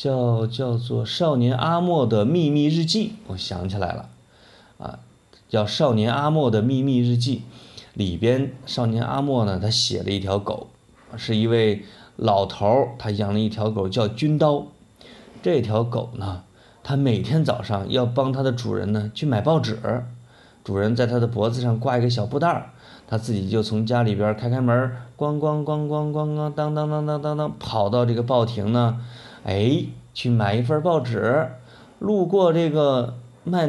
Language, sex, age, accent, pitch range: Chinese, male, 30-49, native, 105-130 Hz